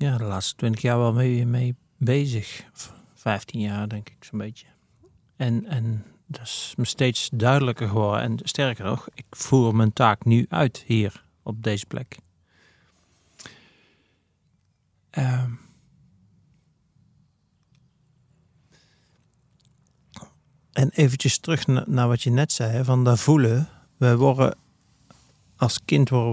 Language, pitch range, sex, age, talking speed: Dutch, 115-130 Hz, male, 40-59, 120 wpm